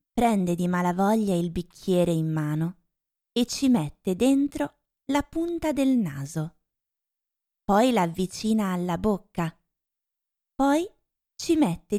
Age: 20-39